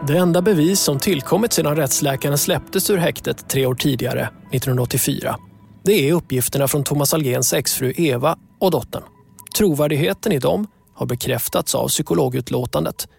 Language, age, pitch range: Swedish, 20-39, 140-190 Hz